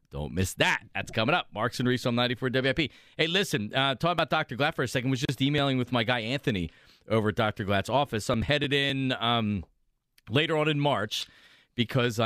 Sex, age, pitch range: male, 40-59, 115-150 Hz